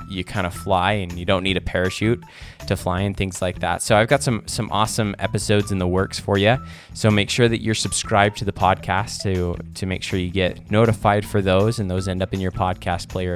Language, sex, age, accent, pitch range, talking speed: English, male, 20-39, American, 90-110 Hz, 245 wpm